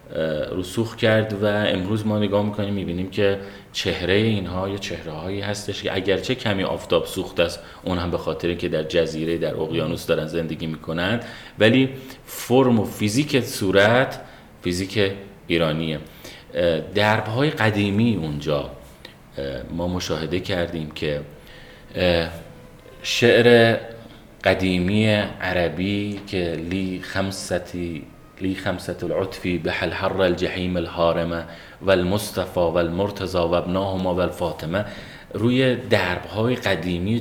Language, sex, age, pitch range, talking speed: Persian, male, 30-49, 85-110 Hz, 110 wpm